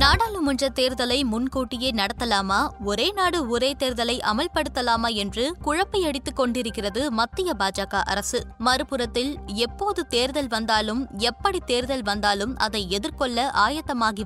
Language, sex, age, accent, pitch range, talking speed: Tamil, female, 20-39, native, 225-275 Hz, 105 wpm